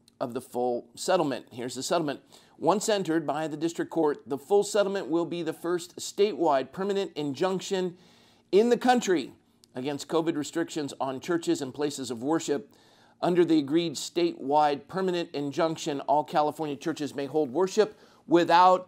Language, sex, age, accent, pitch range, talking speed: English, male, 50-69, American, 150-200 Hz, 155 wpm